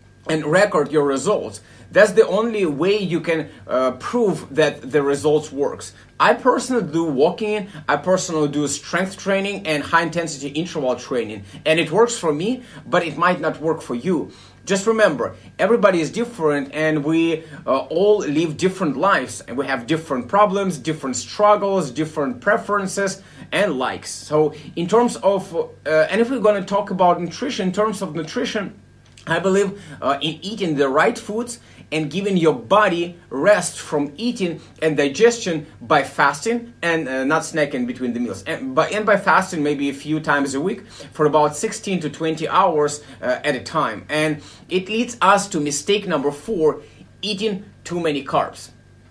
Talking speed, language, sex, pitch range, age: 170 wpm, English, male, 150-205 Hz, 30-49